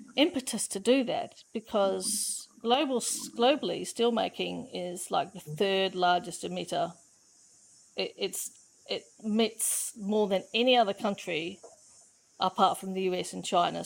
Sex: female